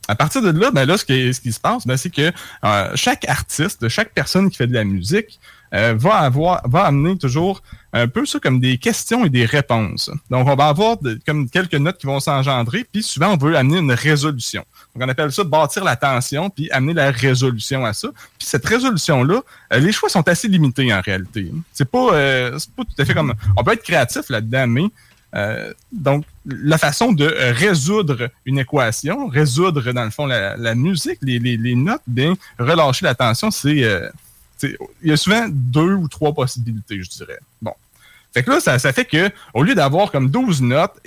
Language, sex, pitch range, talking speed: French, male, 125-165 Hz, 215 wpm